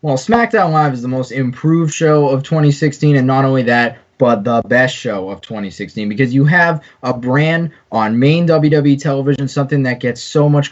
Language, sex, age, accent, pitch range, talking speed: English, male, 20-39, American, 120-145 Hz, 190 wpm